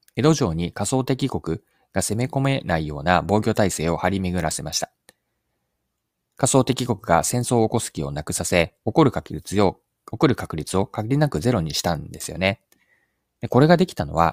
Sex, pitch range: male, 90-130 Hz